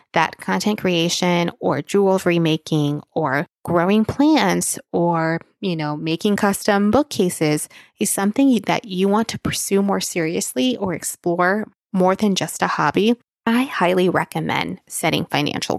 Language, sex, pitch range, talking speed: English, female, 165-210 Hz, 135 wpm